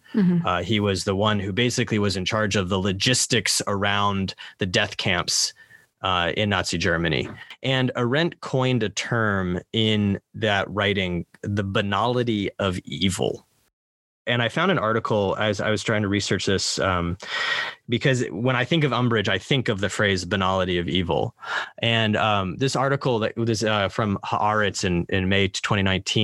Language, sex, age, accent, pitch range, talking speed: English, male, 20-39, American, 100-125 Hz, 160 wpm